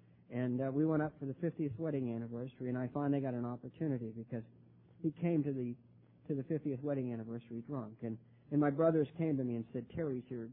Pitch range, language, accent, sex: 115-150 Hz, English, American, male